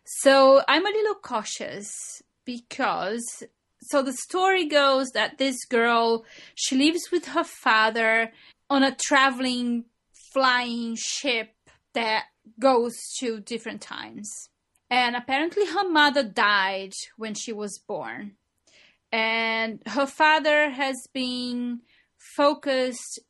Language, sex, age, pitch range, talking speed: English, female, 30-49, 225-275 Hz, 110 wpm